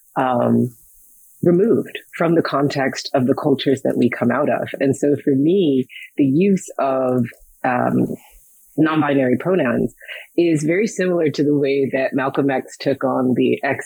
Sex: female